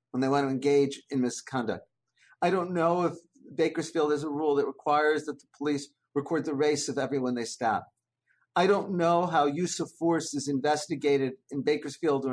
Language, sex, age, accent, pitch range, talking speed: English, male, 50-69, American, 135-165 Hz, 190 wpm